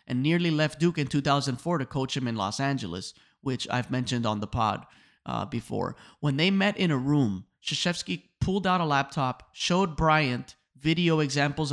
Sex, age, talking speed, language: male, 30-49, 180 wpm, English